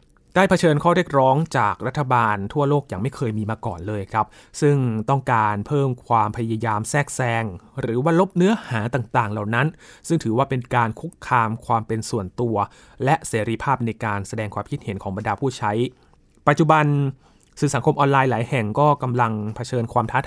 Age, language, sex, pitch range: 20-39, Thai, male, 115-145 Hz